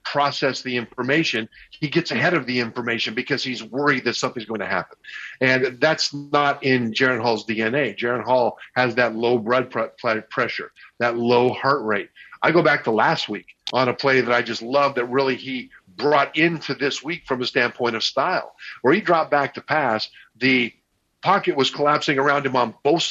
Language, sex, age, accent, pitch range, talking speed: English, male, 50-69, American, 120-150 Hz, 190 wpm